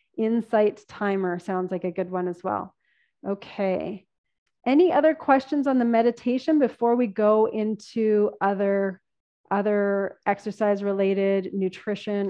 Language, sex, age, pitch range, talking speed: English, female, 30-49, 195-235 Hz, 120 wpm